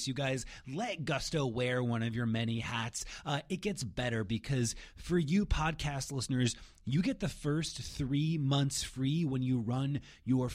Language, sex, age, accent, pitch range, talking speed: English, male, 30-49, American, 110-140 Hz, 170 wpm